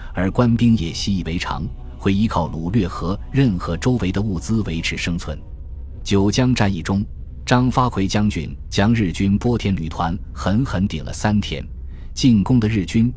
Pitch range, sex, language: 80-105 Hz, male, Chinese